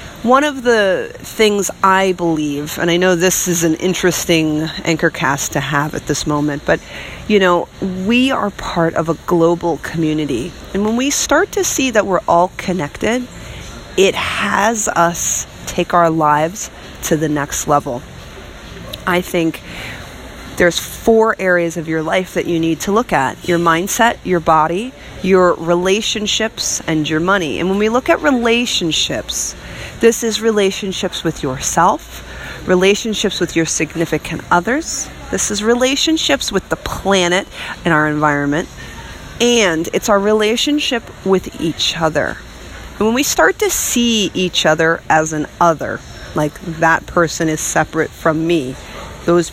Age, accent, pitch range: 30-49, American, 160-210 Hz